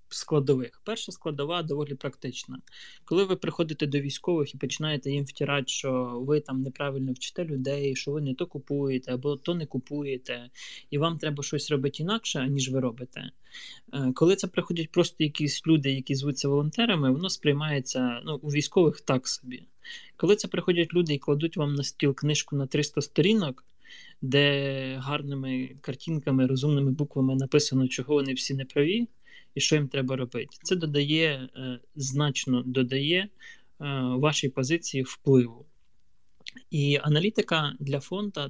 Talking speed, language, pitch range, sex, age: 150 wpm, Ukrainian, 135-155 Hz, male, 20-39